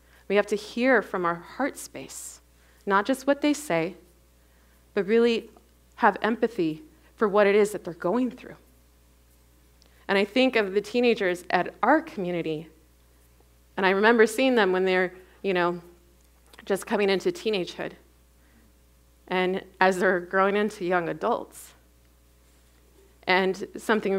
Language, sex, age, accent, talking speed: English, female, 30-49, American, 140 wpm